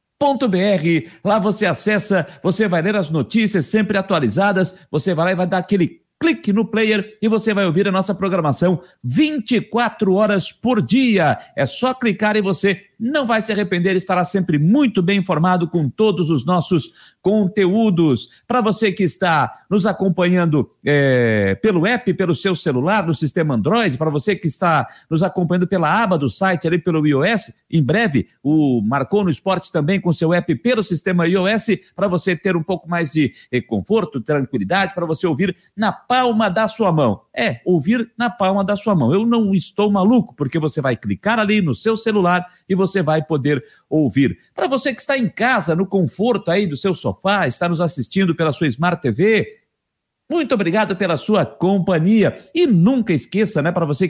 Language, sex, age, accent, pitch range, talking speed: Portuguese, male, 60-79, Brazilian, 165-215 Hz, 185 wpm